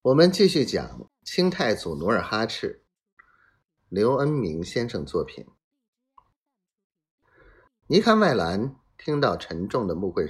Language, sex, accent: Chinese, male, native